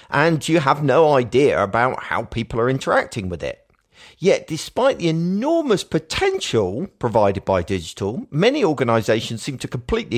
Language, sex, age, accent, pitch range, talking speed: English, male, 50-69, British, 105-160 Hz, 145 wpm